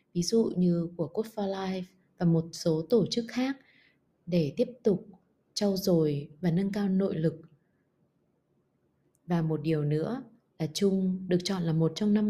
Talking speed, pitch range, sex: 170 wpm, 165-205 Hz, female